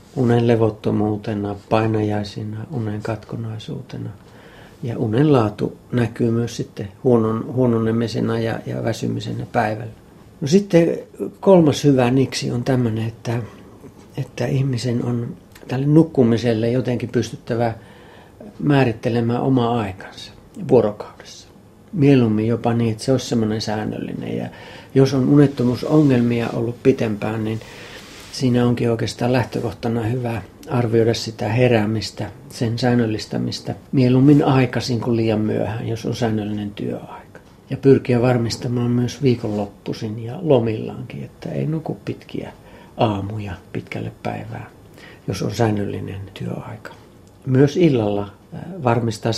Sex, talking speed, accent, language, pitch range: male, 110 wpm, native, Finnish, 110-125 Hz